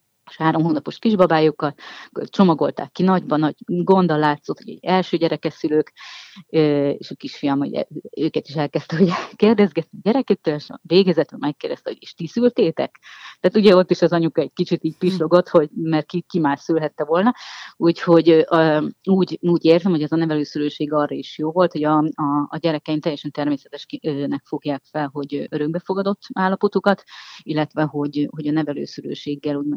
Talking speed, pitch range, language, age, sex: 155 wpm, 145-170 Hz, Hungarian, 30-49, female